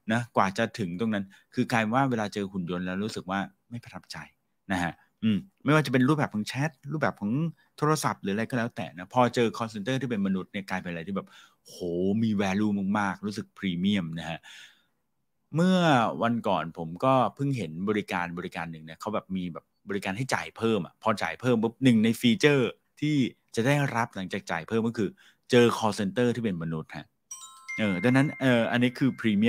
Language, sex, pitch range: Thai, male, 95-125 Hz